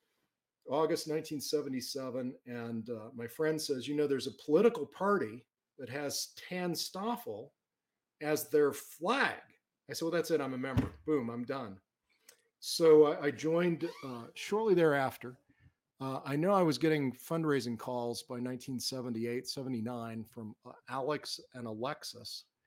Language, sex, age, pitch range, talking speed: English, male, 40-59, 115-150 Hz, 140 wpm